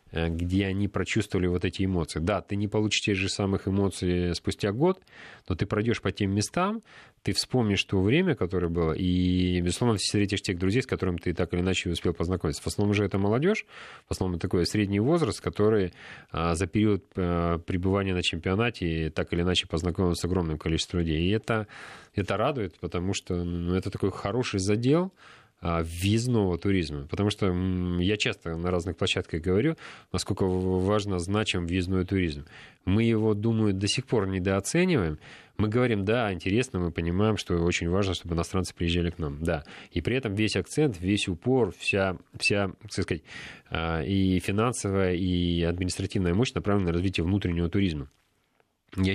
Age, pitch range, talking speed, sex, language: 30-49, 85-105 Hz, 165 wpm, male, Russian